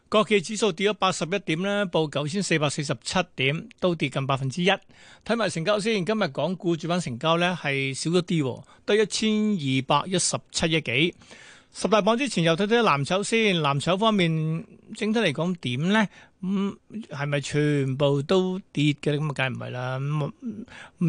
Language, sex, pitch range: Chinese, male, 145-195 Hz